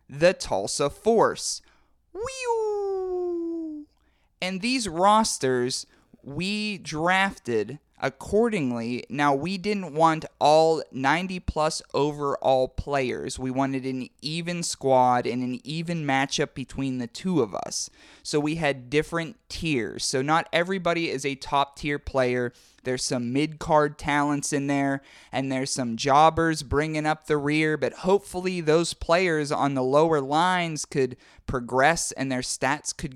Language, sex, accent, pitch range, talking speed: English, male, American, 130-180 Hz, 130 wpm